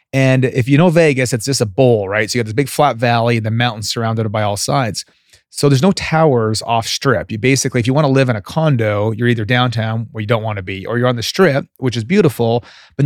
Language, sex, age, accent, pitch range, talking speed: English, male, 30-49, American, 115-130 Hz, 265 wpm